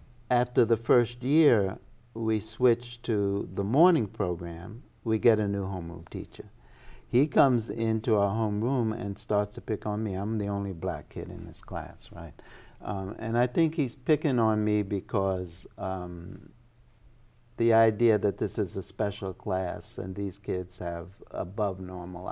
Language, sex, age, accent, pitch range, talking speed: English, male, 60-79, American, 95-115 Hz, 160 wpm